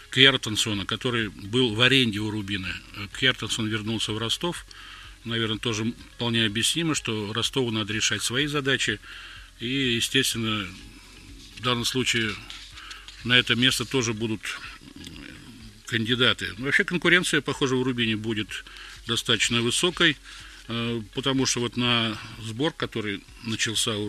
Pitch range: 110-130 Hz